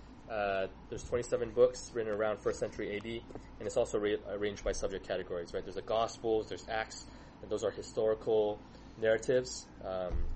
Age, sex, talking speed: 20-39, male, 170 wpm